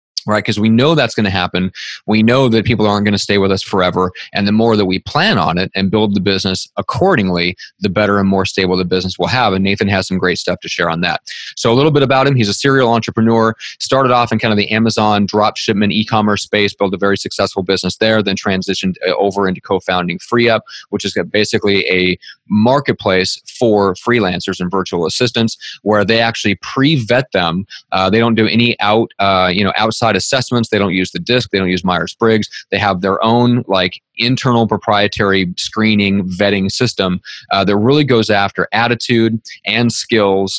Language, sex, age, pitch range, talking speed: English, male, 30-49, 95-115 Hz, 205 wpm